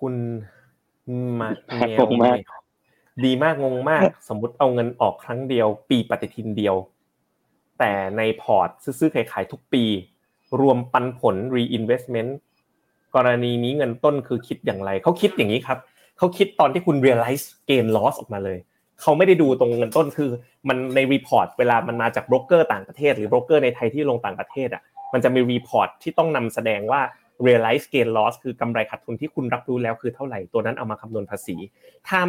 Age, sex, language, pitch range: 20-39, male, Thai, 110-140 Hz